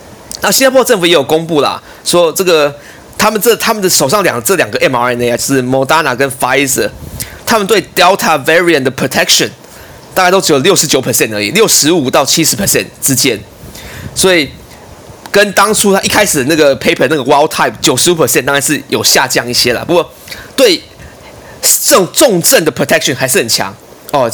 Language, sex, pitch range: Chinese, male, 135-180 Hz